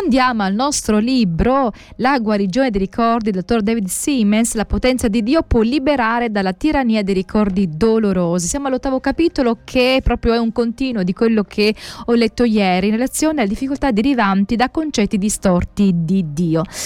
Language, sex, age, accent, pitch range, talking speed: Italian, female, 20-39, native, 195-250 Hz, 165 wpm